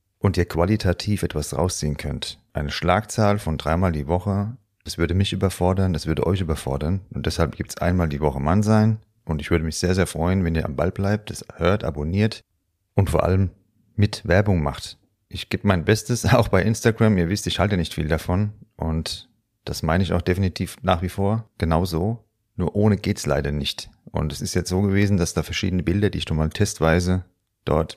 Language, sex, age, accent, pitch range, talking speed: German, male, 40-59, German, 85-100 Hz, 205 wpm